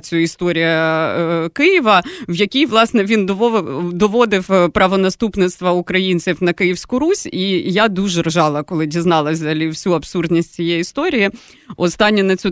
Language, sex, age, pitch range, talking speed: Ukrainian, female, 30-49, 175-235 Hz, 130 wpm